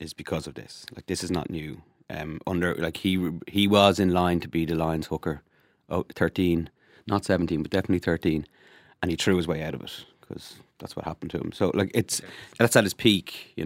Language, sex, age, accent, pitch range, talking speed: English, male, 30-49, Irish, 80-100 Hz, 225 wpm